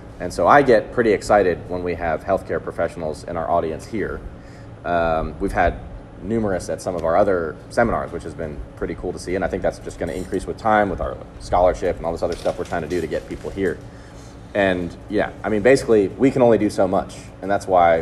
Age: 30-49